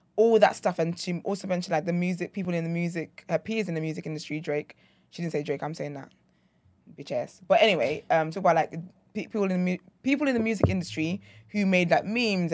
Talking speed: 230 wpm